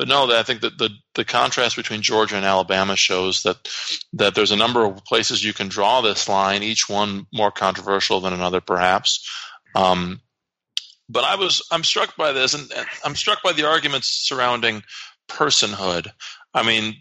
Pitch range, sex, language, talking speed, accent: 95-110 Hz, male, English, 175 wpm, American